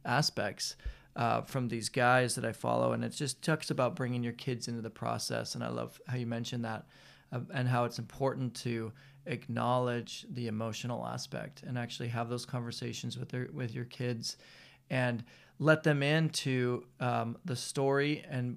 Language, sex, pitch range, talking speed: English, male, 120-140 Hz, 175 wpm